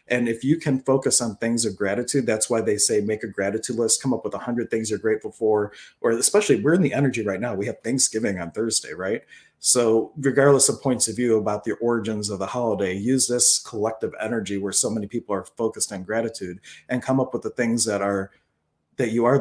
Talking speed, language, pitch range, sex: 230 wpm, English, 105-130 Hz, male